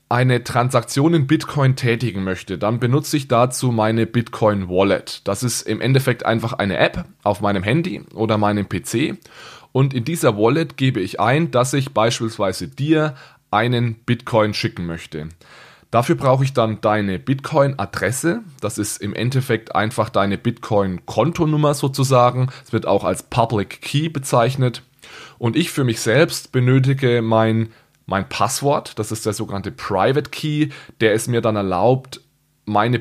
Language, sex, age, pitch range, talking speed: German, male, 20-39, 110-140 Hz, 150 wpm